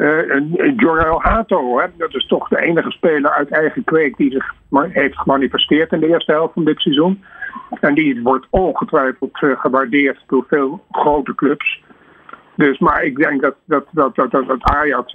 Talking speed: 180 wpm